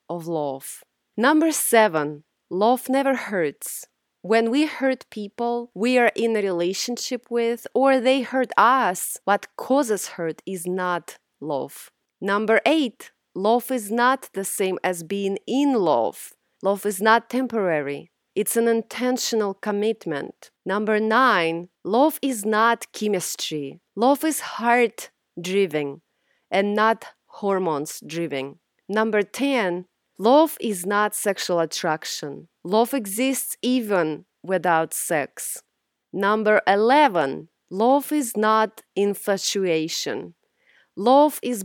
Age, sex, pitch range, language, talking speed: 30-49, female, 180-245 Hz, English, 115 wpm